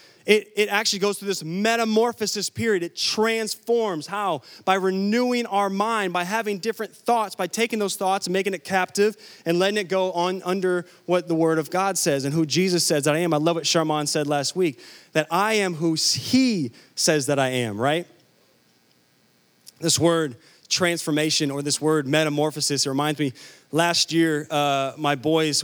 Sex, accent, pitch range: male, American, 150-210 Hz